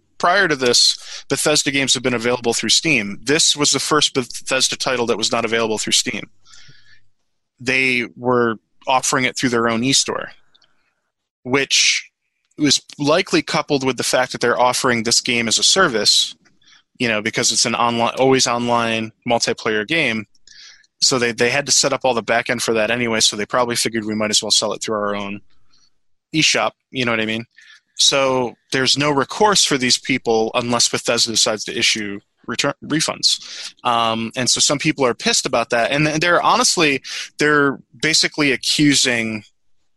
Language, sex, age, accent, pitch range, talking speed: English, male, 20-39, American, 115-135 Hz, 175 wpm